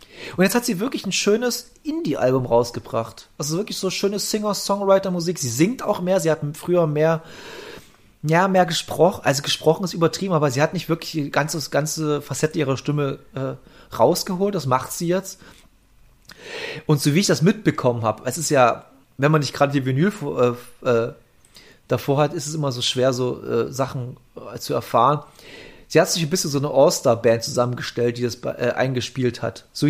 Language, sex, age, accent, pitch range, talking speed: German, male, 30-49, German, 125-175 Hz, 185 wpm